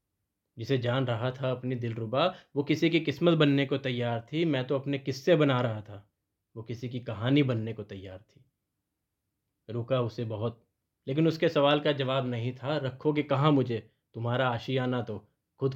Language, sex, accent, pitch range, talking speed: Hindi, male, native, 115-140 Hz, 175 wpm